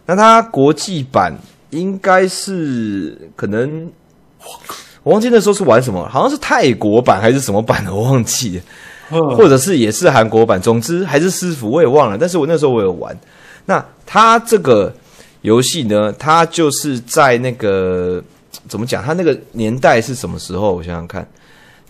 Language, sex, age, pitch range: Chinese, male, 20-39, 100-145 Hz